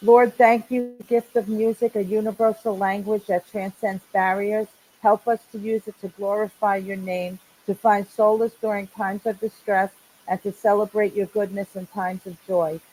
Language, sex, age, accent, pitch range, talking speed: English, female, 50-69, American, 185-210 Hz, 180 wpm